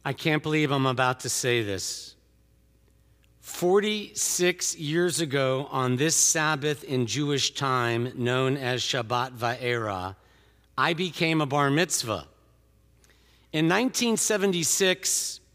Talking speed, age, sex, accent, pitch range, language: 110 wpm, 50-69, male, American, 115-175 Hz, English